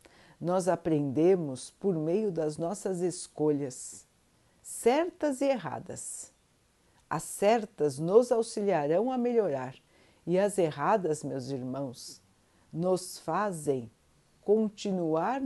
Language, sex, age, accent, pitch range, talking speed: Portuguese, female, 50-69, Brazilian, 150-210 Hz, 95 wpm